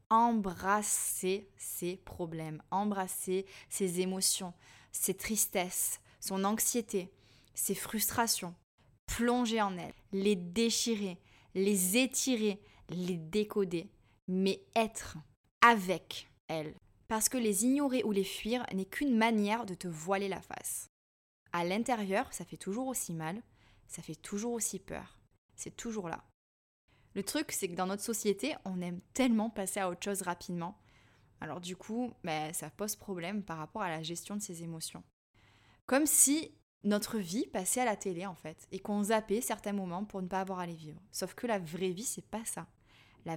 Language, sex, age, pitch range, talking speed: French, female, 20-39, 175-225 Hz, 160 wpm